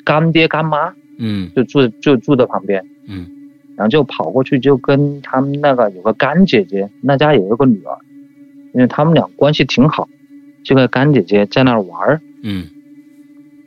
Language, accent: Chinese, native